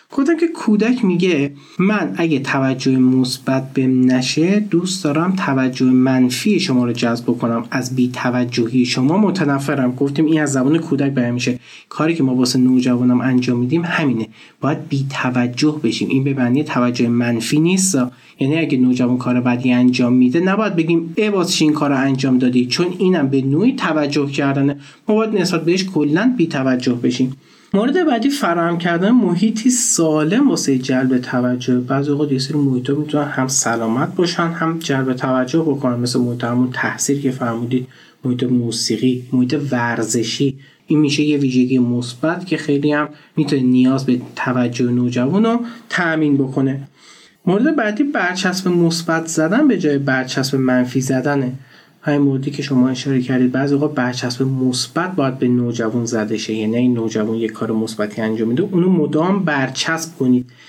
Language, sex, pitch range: Persian, male, 125-160 Hz